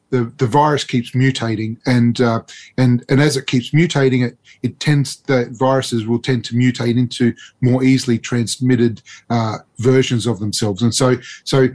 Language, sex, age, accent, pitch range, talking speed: English, male, 30-49, Australian, 120-135 Hz, 170 wpm